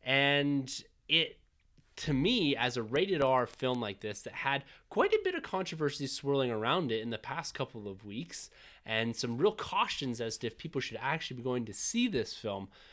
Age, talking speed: 20-39, 200 wpm